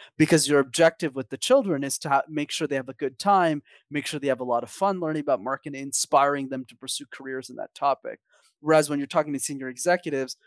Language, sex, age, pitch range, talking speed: English, male, 30-49, 130-160 Hz, 235 wpm